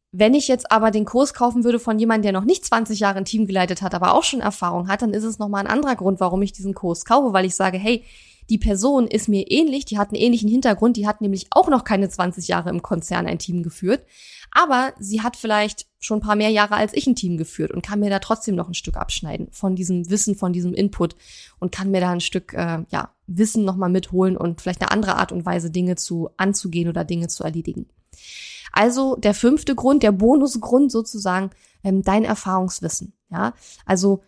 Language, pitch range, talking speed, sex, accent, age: German, 185-220 Hz, 225 wpm, female, German, 20-39